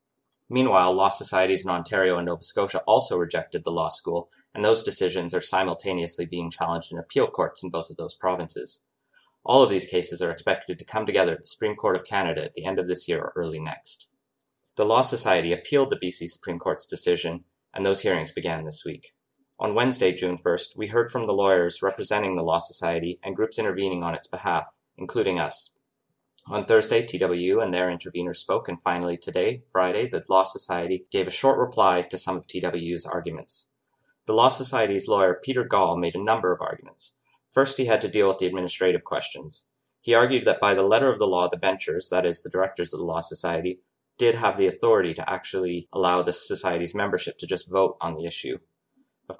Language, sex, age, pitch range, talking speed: English, male, 30-49, 90-140 Hz, 205 wpm